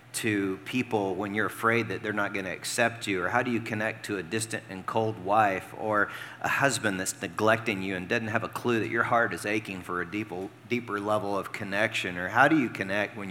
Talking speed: 230 wpm